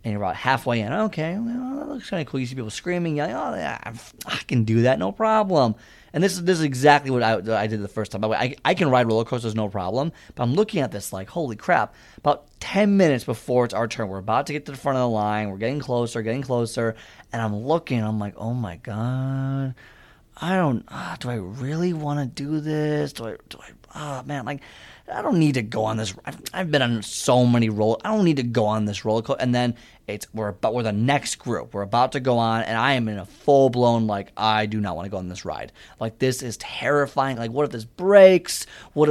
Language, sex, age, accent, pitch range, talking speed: English, male, 30-49, American, 110-150 Hz, 260 wpm